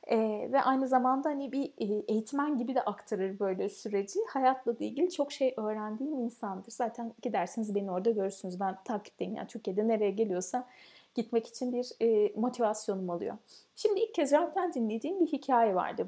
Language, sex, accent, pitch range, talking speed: Turkish, female, native, 210-280 Hz, 160 wpm